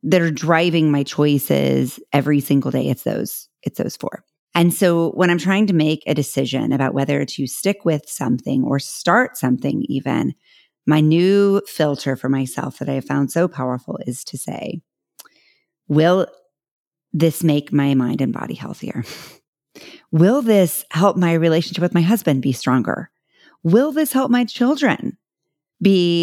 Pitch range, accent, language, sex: 140-200 Hz, American, English, female